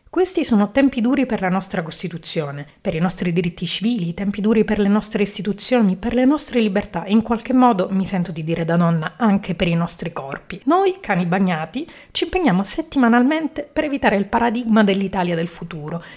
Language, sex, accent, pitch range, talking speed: Italian, female, native, 170-240 Hz, 190 wpm